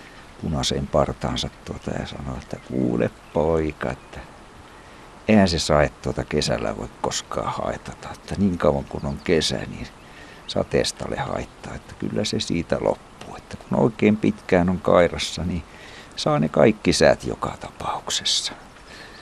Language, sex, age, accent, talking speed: Finnish, male, 60-79, native, 140 wpm